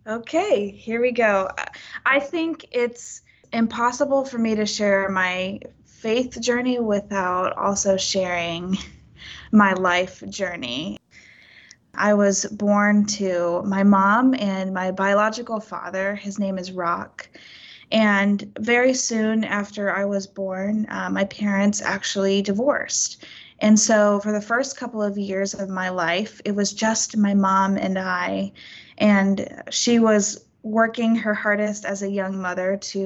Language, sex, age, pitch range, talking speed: English, female, 20-39, 195-225 Hz, 140 wpm